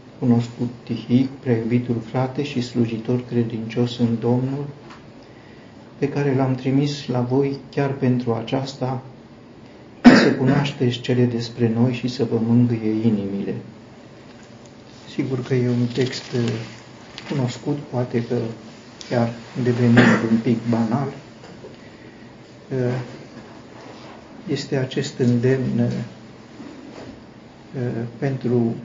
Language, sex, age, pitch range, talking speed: Romanian, male, 50-69, 115-125 Hz, 95 wpm